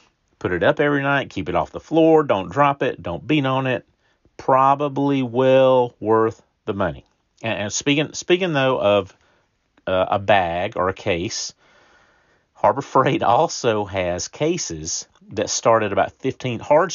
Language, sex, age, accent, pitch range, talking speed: English, male, 40-59, American, 95-130 Hz, 160 wpm